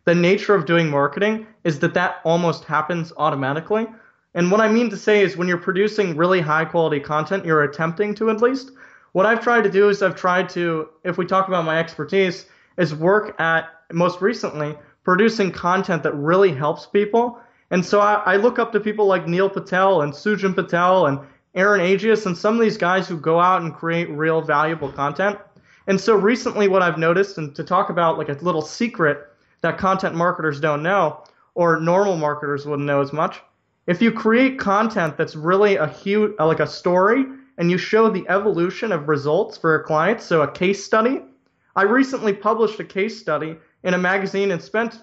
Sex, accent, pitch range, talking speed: male, American, 160-205 Hz, 195 wpm